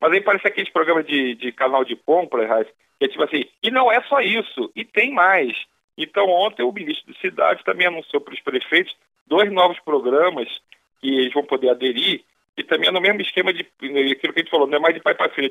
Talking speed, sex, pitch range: 230 wpm, male, 145-210 Hz